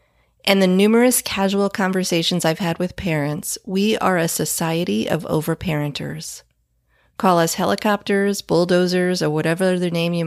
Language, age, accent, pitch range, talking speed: English, 30-49, American, 155-195 Hz, 140 wpm